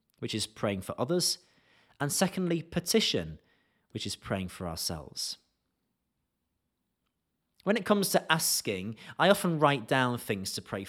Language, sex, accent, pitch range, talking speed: English, male, British, 110-160 Hz, 140 wpm